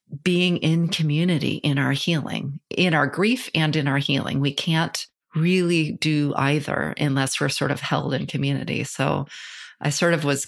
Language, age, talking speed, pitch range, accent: English, 30-49, 170 wpm, 140-165 Hz, American